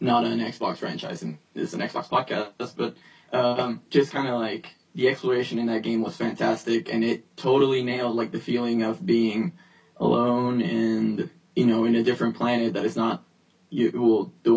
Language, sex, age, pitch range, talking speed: English, male, 10-29, 115-130 Hz, 185 wpm